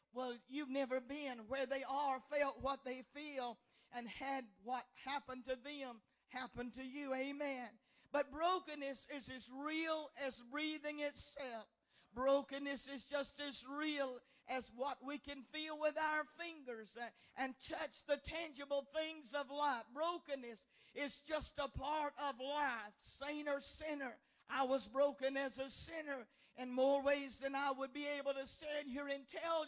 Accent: American